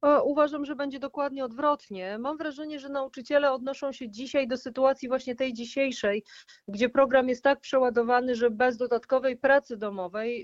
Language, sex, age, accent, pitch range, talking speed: Polish, female, 40-59, native, 235-270 Hz, 155 wpm